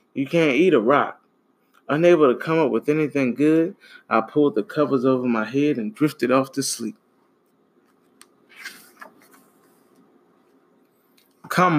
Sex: male